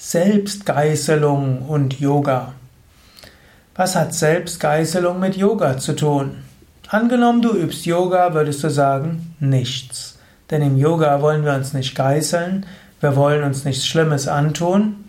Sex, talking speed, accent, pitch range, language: male, 125 wpm, German, 140-190 Hz, German